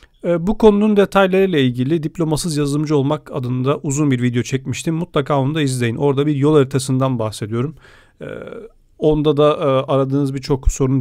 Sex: male